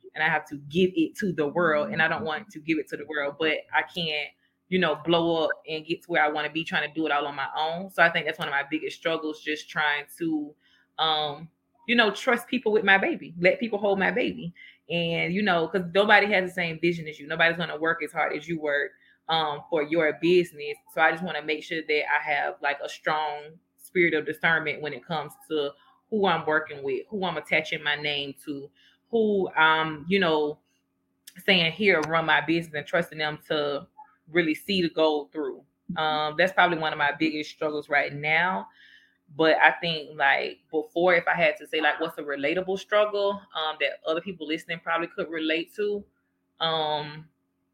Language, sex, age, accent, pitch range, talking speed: English, female, 20-39, American, 150-180 Hz, 220 wpm